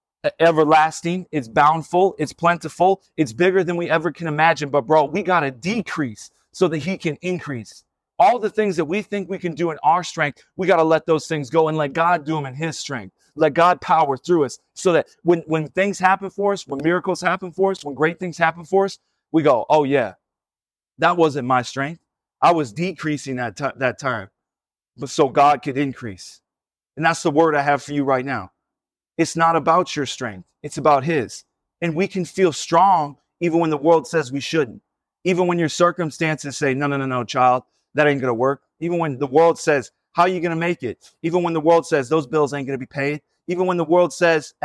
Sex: male